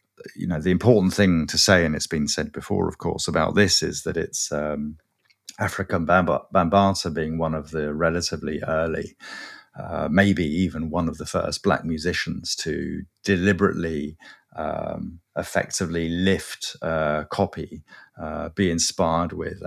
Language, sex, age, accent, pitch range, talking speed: English, male, 50-69, British, 80-95 Hz, 145 wpm